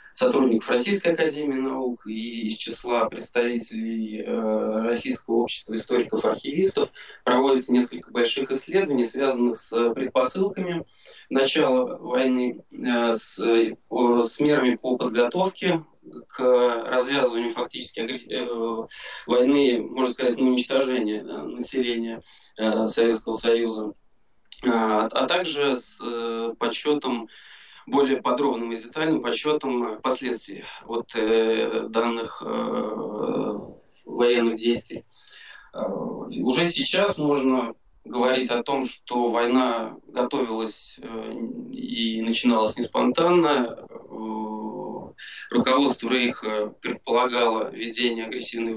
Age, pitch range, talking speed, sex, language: 20-39, 115-135 Hz, 80 wpm, male, Russian